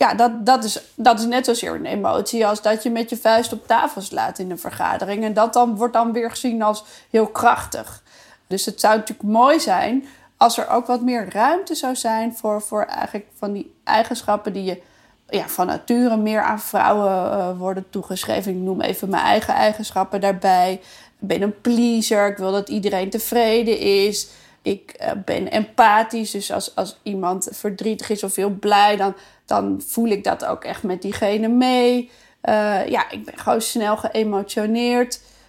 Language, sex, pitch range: Dutch, female, 205-240 Hz